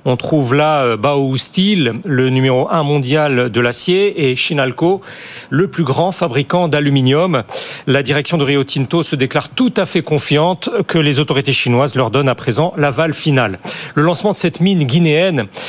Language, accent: French, French